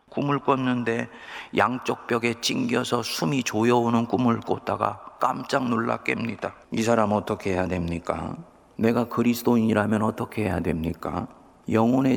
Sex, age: male, 40-59